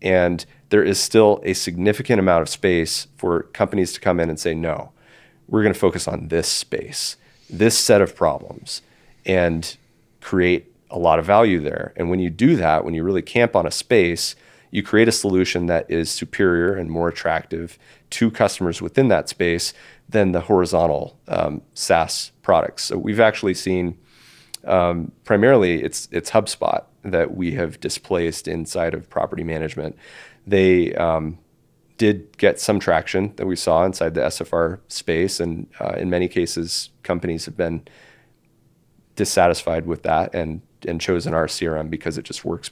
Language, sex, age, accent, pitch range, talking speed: English, male, 30-49, American, 85-105 Hz, 165 wpm